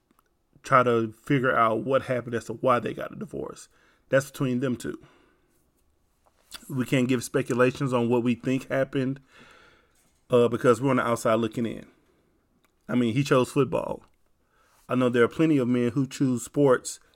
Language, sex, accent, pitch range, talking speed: English, male, American, 115-135 Hz, 170 wpm